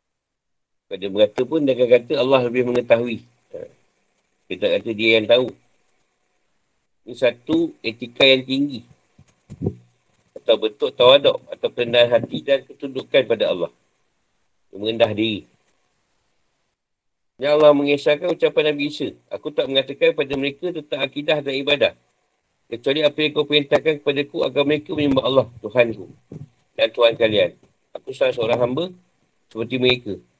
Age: 50-69